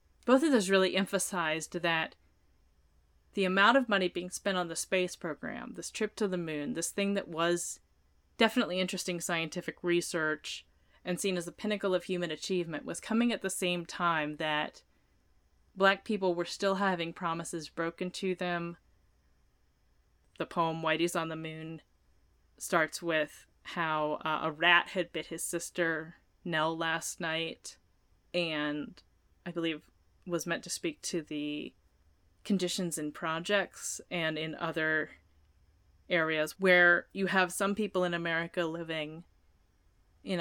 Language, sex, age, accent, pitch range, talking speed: English, female, 20-39, American, 150-185 Hz, 145 wpm